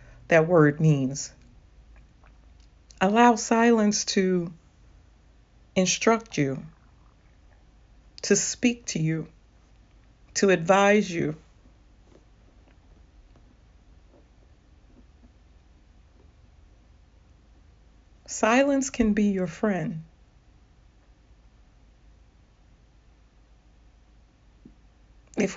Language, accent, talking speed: English, American, 50 wpm